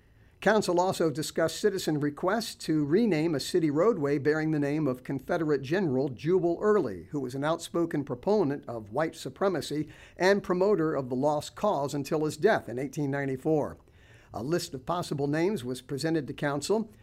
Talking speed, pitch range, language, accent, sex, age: 160 wpm, 140-190 Hz, English, American, male, 50-69